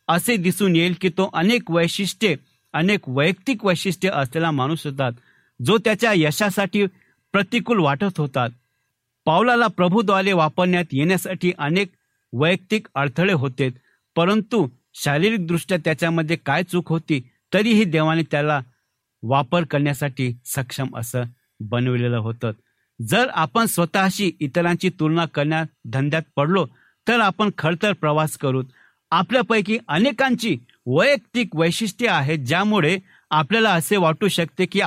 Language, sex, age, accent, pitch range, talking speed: Marathi, male, 60-79, native, 140-195 Hz, 110 wpm